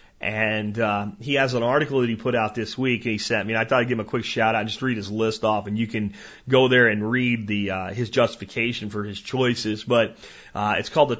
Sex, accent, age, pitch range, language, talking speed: male, American, 40-59, 110-140 Hz, English, 270 wpm